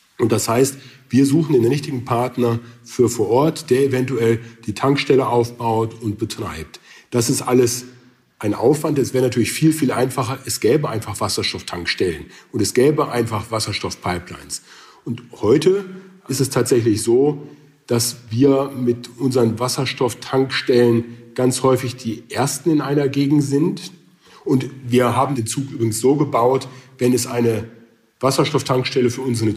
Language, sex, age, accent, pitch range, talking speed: German, male, 40-59, German, 120-140 Hz, 145 wpm